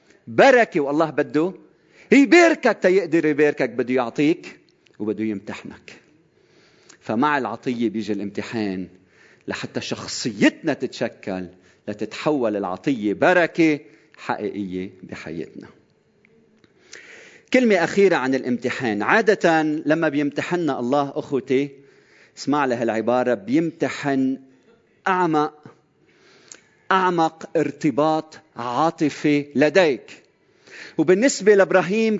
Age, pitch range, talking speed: 40-59, 130-200 Hz, 80 wpm